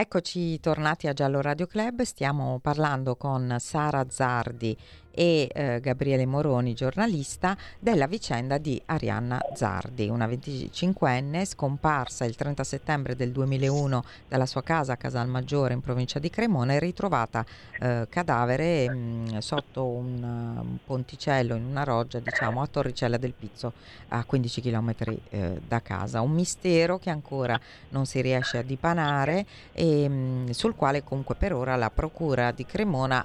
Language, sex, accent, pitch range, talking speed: Italian, female, native, 120-145 Hz, 150 wpm